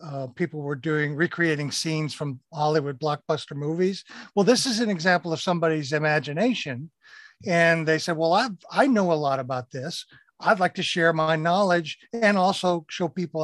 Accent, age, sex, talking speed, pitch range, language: American, 50-69, male, 175 wpm, 155-195 Hz, English